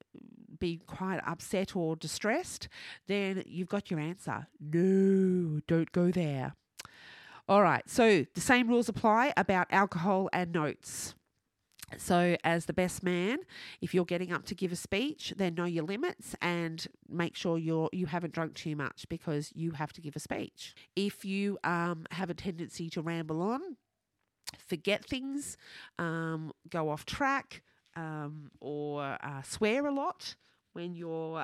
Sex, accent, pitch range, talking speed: female, Australian, 170-215 Hz, 155 wpm